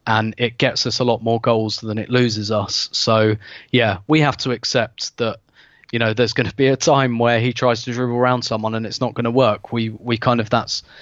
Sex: male